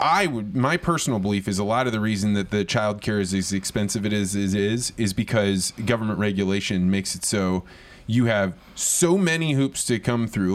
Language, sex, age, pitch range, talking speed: English, male, 20-39, 100-125 Hz, 215 wpm